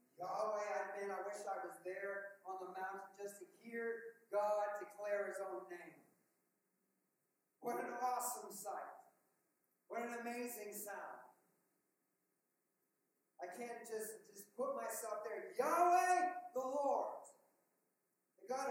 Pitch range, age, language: 220-260 Hz, 40-59, English